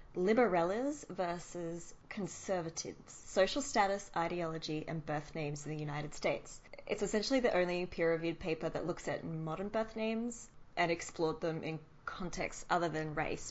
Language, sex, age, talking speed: English, female, 20-39, 145 wpm